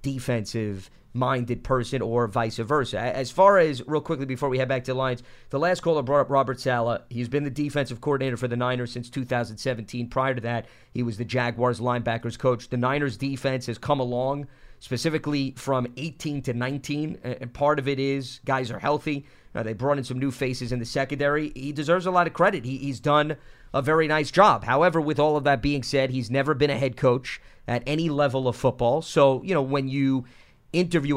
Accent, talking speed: American, 210 wpm